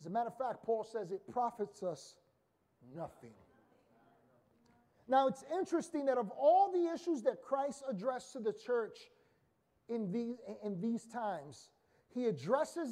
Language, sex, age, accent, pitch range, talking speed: English, male, 30-49, American, 230-315 Hz, 150 wpm